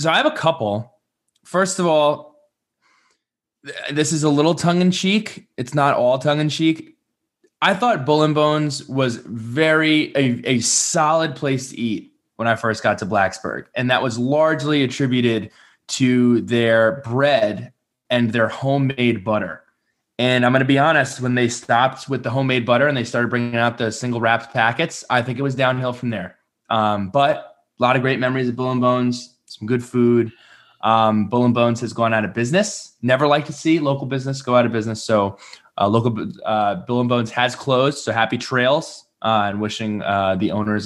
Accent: American